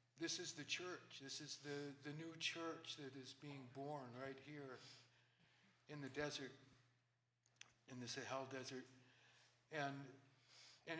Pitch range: 130-150 Hz